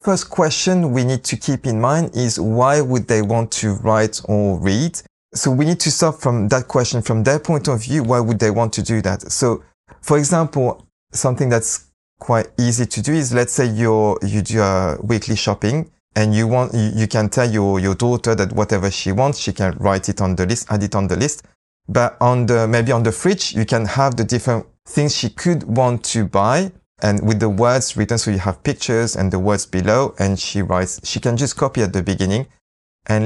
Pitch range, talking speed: 105-140 Hz, 220 wpm